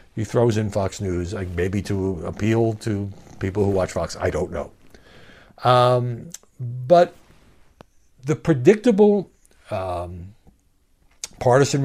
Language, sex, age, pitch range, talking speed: English, male, 60-79, 90-130 Hz, 115 wpm